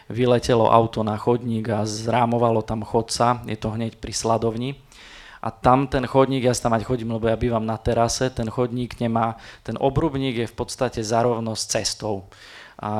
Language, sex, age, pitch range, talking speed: Slovak, male, 20-39, 110-125 Hz, 180 wpm